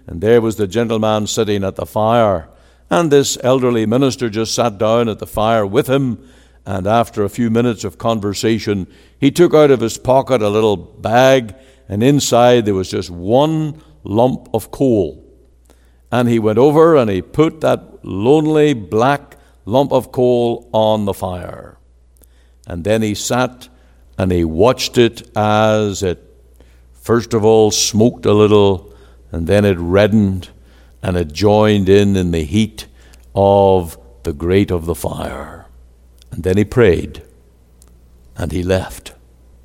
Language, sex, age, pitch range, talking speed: English, male, 60-79, 65-115 Hz, 155 wpm